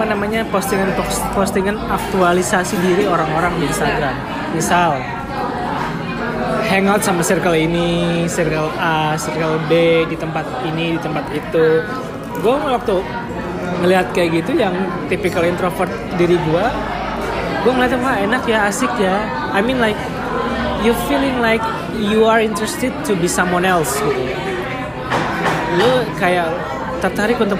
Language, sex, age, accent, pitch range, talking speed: Indonesian, male, 20-39, native, 160-200 Hz, 125 wpm